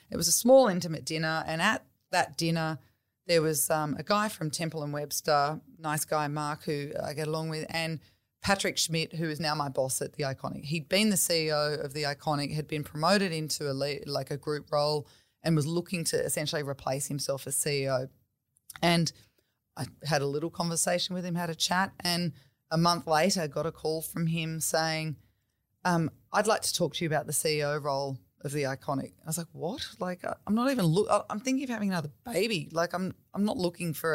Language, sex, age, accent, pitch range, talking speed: English, female, 30-49, Australian, 145-180 Hz, 215 wpm